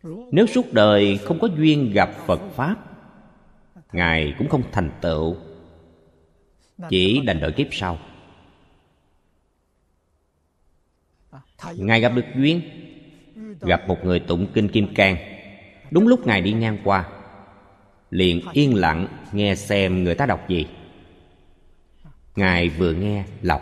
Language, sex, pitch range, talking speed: Vietnamese, male, 80-130 Hz, 125 wpm